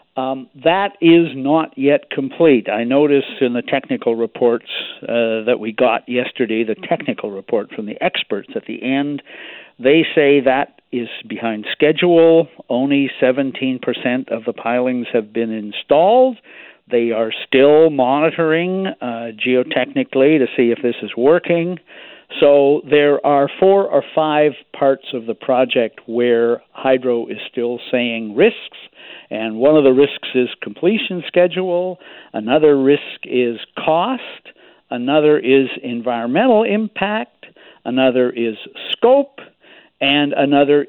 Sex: male